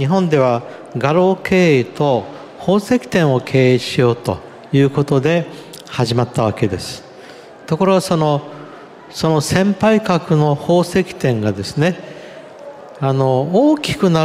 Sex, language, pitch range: male, Japanese, 130-185 Hz